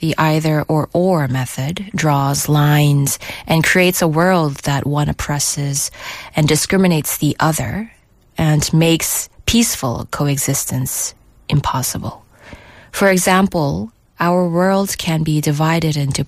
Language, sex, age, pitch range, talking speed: English, female, 20-39, 145-180 Hz, 105 wpm